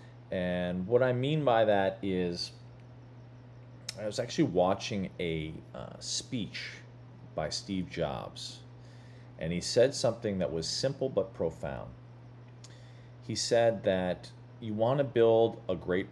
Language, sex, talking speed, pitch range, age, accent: English, male, 130 wpm, 95-120 Hz, 40-59, American